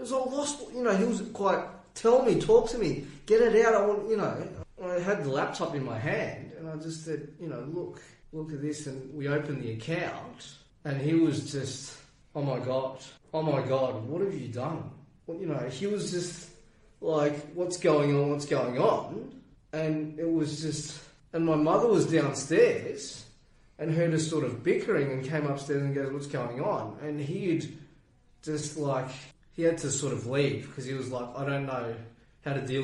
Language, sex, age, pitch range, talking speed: English, male, 20-39, 130-160 Hz, 205 wpm